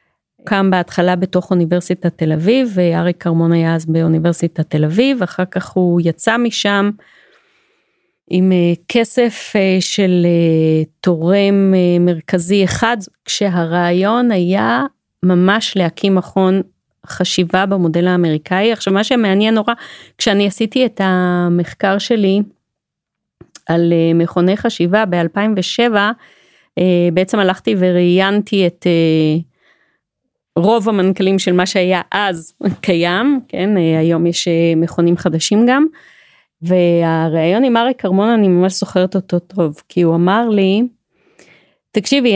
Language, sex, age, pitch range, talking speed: Hebrew, female, 30-49, 175-210 Hz, 110 wpm